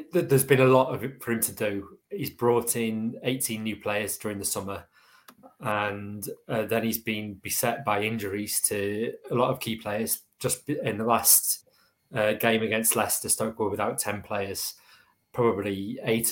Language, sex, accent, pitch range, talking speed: English, male, British, 100-125 Hz, 175 wpm